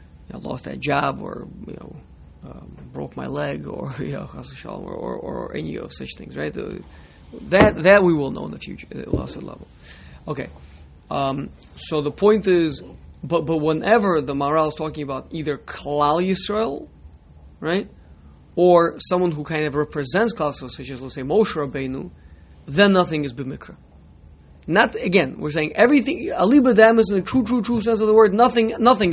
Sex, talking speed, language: male, 180 wpm, English